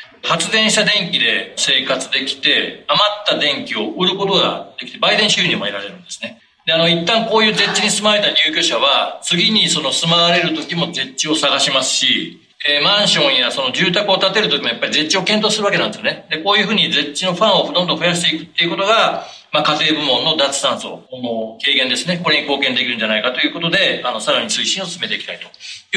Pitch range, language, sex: 150-200 Hz, Japanese, male